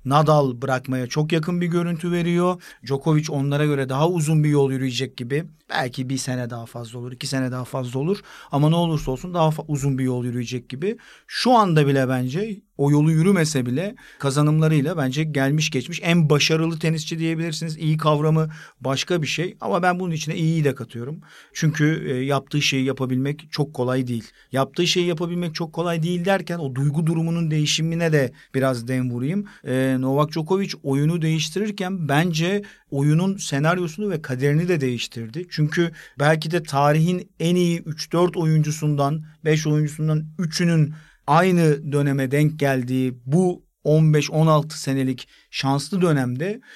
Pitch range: 135-170 Hz